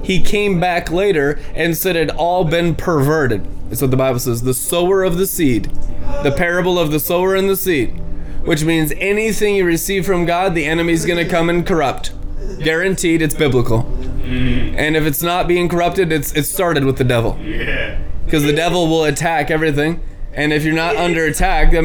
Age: 20-39